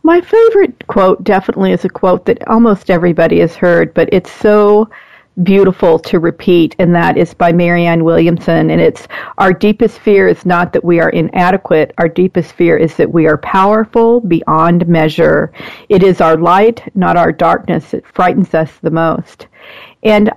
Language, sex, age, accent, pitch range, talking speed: English, female, 50-69, American, 170-205 Hz, 170 wpm